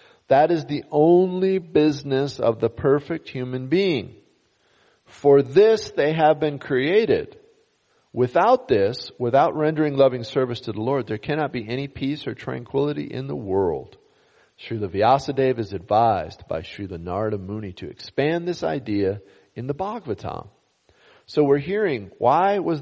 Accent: American